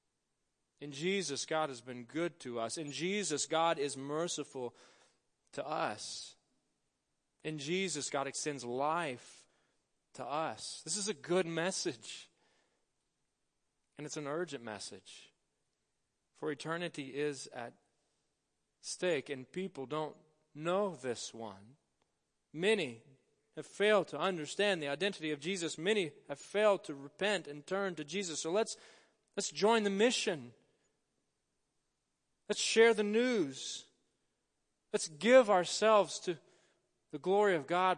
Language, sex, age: English, male, 30-49